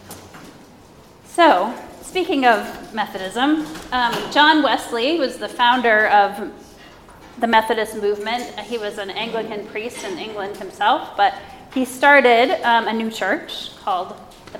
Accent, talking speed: American, 125 wpm